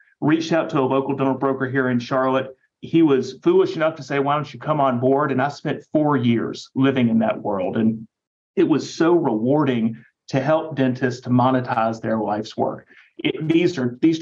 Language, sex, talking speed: English, male, 195 wpm